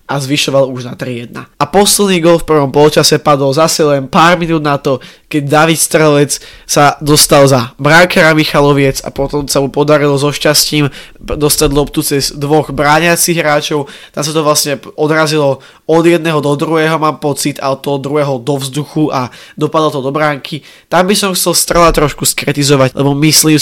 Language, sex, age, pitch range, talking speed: Slovak, male, 20-39, 140-155 Hz, 180 wpm